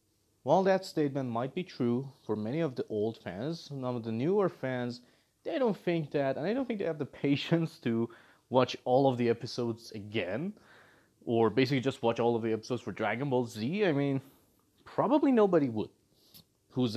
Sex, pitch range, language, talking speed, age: male, 115-155 Hz, English, 190 wpm, 30-49